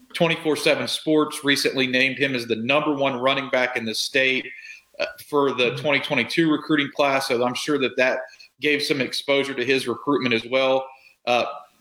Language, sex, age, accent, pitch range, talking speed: English, male, 40-59, American, 125-150 Hz, 165 wpm